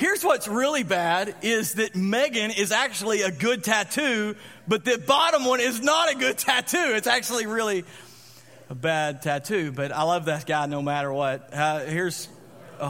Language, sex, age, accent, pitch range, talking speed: English, male, 40-59, American, 150-205 Hz, 175 wpm